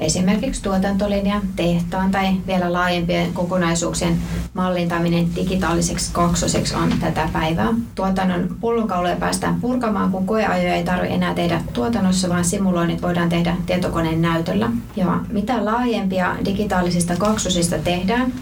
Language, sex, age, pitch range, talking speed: Finnish, female, 30-49, 170-195 Hz, 115 wpm